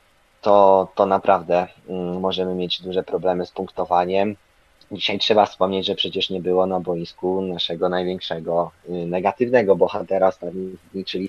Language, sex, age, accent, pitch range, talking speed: Polish, male, 20-39, native, 95-110 Hz, 120 wpm